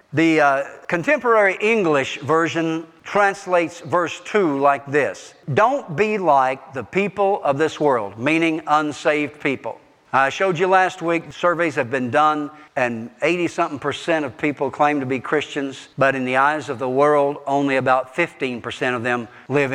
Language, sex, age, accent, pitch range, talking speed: English, male, 50-69, American, 140-200 Hz, 160 wpm